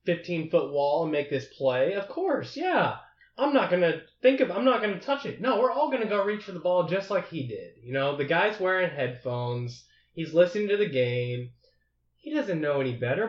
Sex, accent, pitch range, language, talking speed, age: male, American, 145-205 Hz, English, 220 wpm, 20-39